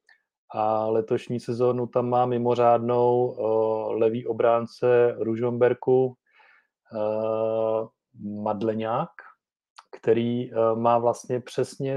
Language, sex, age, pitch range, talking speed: Czech, male, 30-49, 110-125 Hz, 85 wpm